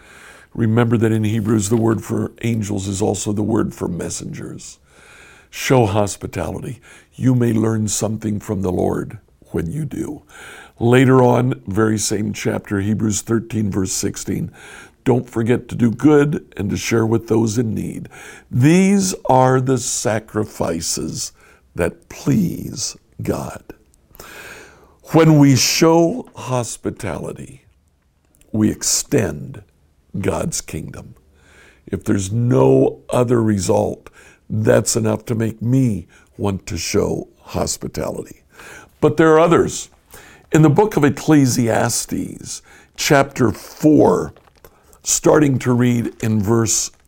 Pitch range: 105-130 Hz